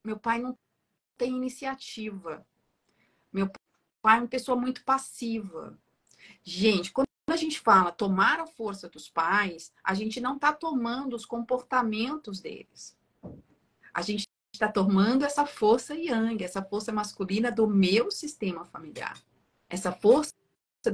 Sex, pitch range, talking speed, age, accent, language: female, 195-260 Hz, 130 wpm, 40-59, Brazilian, Portuguese